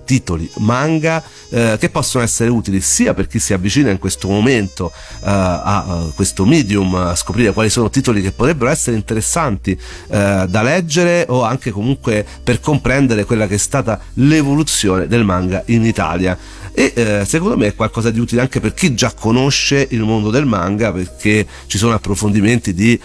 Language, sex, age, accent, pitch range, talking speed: Italian, male, 40-59, native, 95-120 Hz, 175 wpm